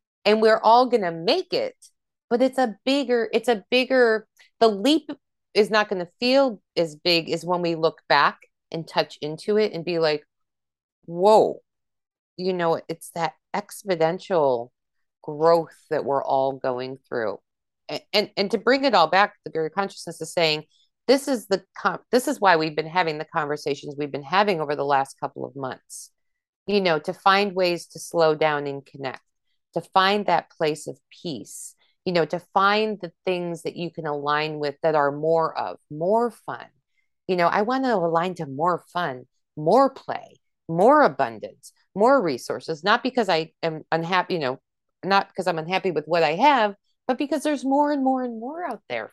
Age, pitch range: 30-49, 160-225 Hz